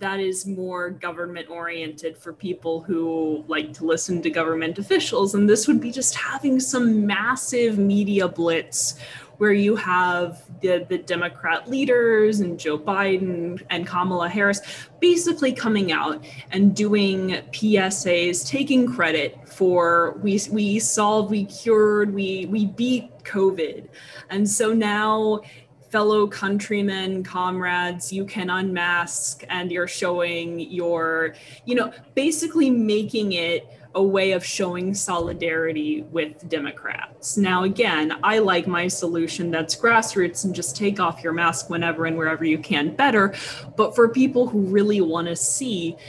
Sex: female